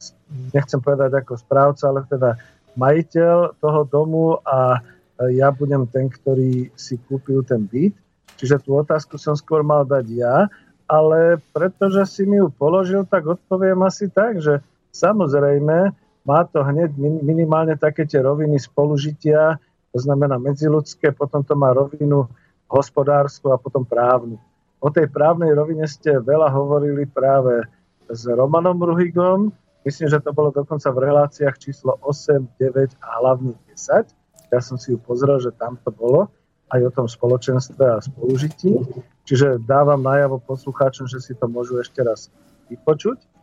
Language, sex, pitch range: Slovak, male, 135-165 Hz